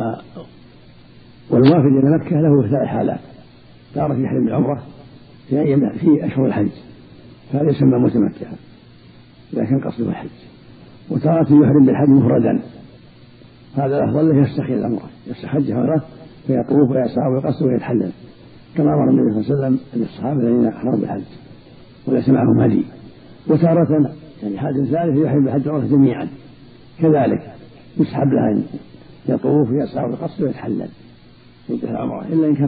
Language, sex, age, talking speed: Arabic, male, 60-79, 125 wpm